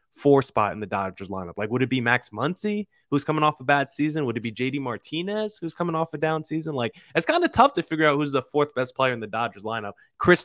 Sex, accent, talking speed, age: male, American, 270 wpm, 20-39